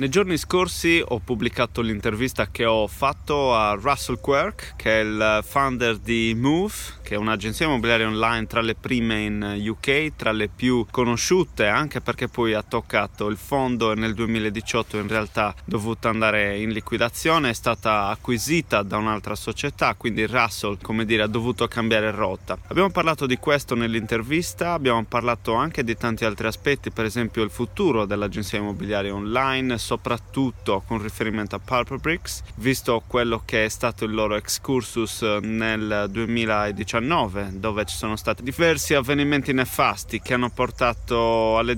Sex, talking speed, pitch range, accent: male, 155 wpm, 105-125 Hz, native